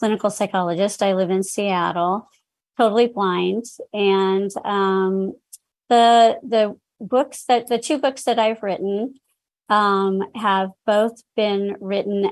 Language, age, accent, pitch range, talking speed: English, 40-59, American, 185-215 Hz, 120 wpm